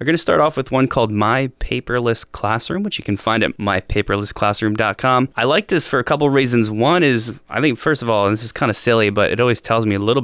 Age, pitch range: 20-39, 105-120 Hz